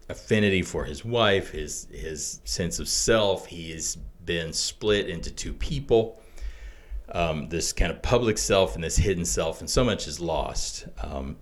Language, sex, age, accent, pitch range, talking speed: English, male, 40-59, American, 75-100 Hz, 170 wpm